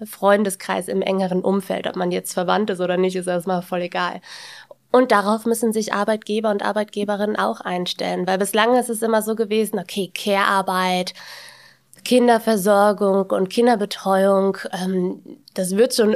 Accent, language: German, German